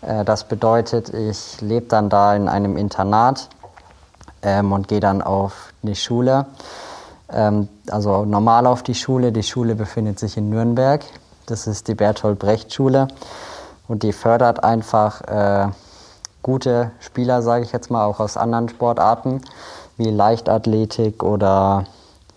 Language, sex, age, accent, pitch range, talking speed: German, male, 20-39, German, 105-120 Hz, 140 wpm